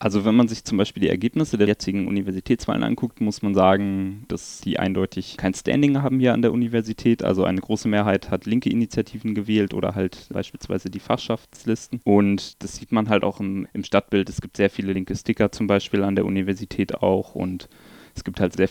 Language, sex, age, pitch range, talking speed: German, male, 20-39, 95-105 Hz, 205 wpm